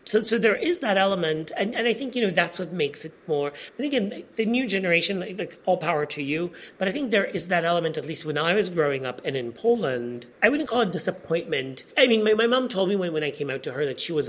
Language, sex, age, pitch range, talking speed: English, male, 40-59, 135-205 Hz, 280 wpm